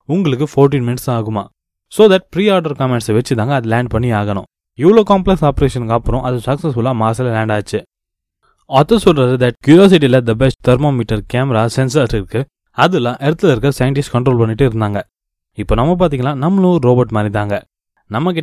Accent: native